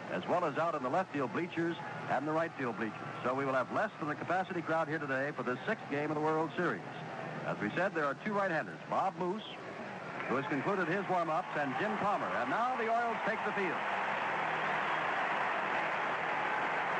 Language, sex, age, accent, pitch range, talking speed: English, male, 60-79, American, 140-185 Hz, 200 wpm